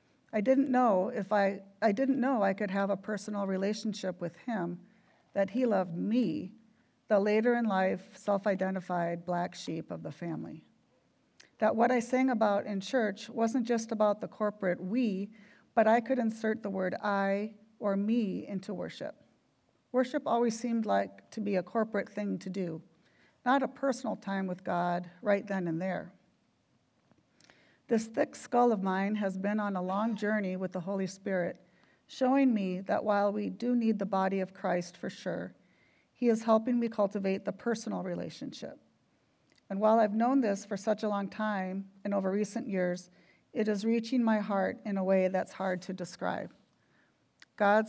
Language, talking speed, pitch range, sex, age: English, 175 wpm, 190-225 Hz, female, 50-69